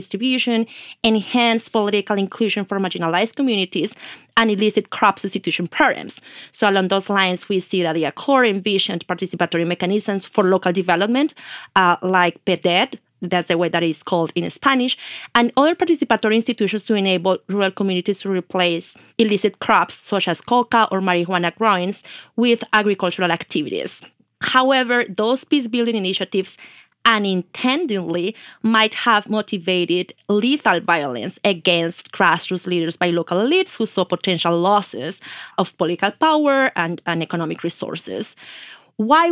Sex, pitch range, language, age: female, 180-225 Hz, English, 30-49